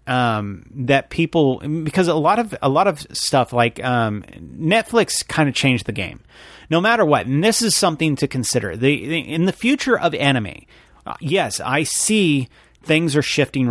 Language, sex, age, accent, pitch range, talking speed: English, male, 30-49, American, 115-150 Hz, 185 wpm